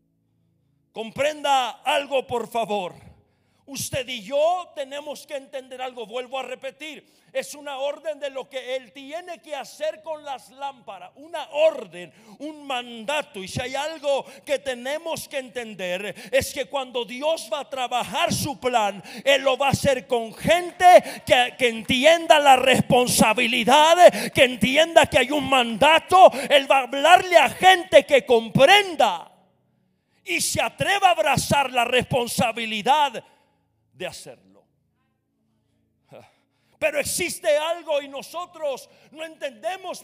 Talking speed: 135 wpm